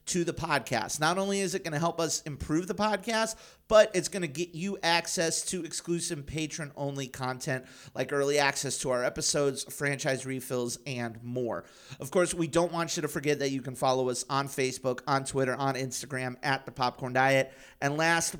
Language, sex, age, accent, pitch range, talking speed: English, male, 30-49, American, 130-170 Hz, 195 wpm